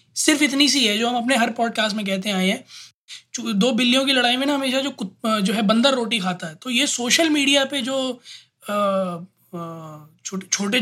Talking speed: 200 wpm